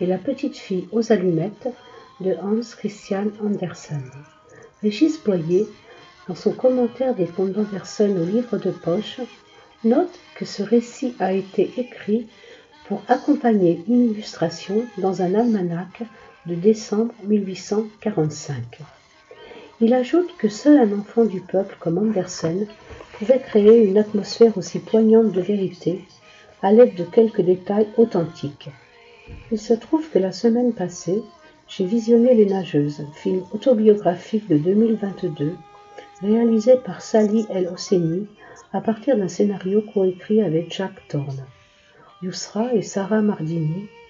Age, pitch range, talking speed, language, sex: 50-69, 180-230 Hz, 130 wpm, French, female